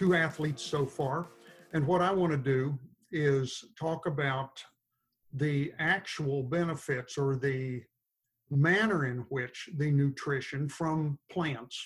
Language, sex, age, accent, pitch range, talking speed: English, male, 50-69, American, 135-170 Hz, 125 wpm